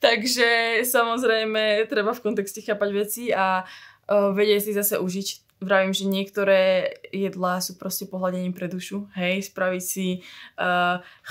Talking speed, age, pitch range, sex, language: 140 wpm, 20-39, 190-210 Hz, female, Slovak